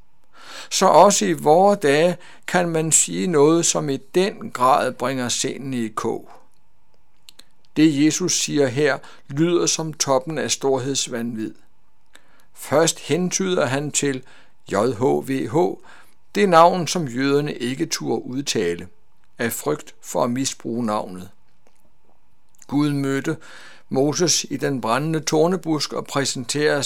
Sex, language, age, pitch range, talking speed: male, Danish, 60-79, 125-160 Hz, 120 wpm